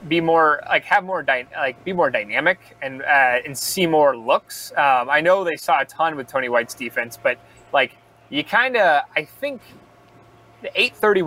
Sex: male